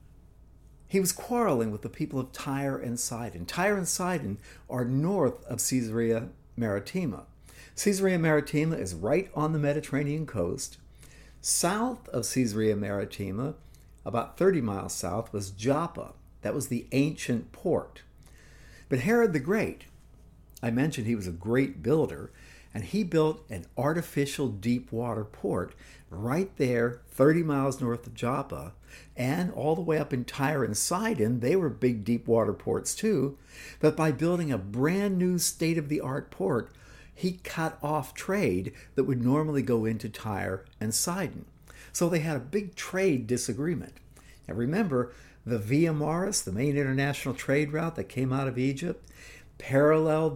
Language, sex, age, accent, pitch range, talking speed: English, male, 60-79, American, 120-160 Hz, 150 wpm